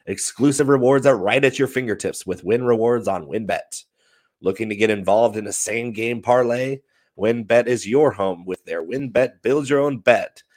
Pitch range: 105-125 Hz